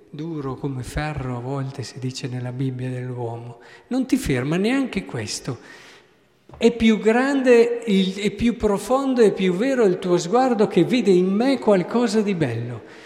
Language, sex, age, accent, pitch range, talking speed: Italian, male, 50-69, native, 145-210 Hz, 155 wpm